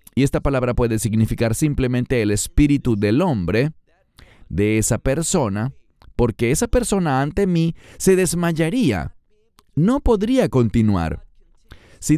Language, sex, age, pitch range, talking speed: English, male, 40-59, 105-145 Hz, 120 wpm